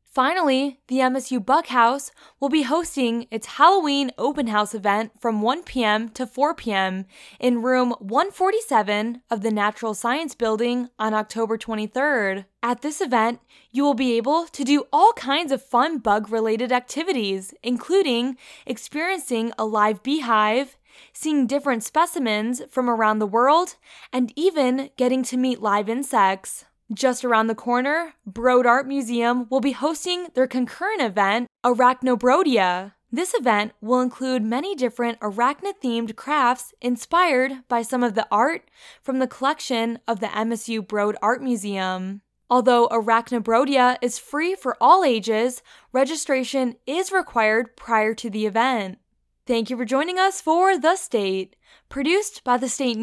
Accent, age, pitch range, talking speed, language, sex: American, 10-29, 225-280 Hz, 140 wpm, English, female